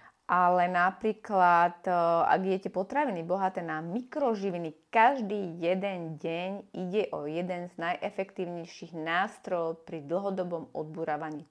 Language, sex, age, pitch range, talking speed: Slovak, female, 30-49, 165-195 Hz, 105 wpm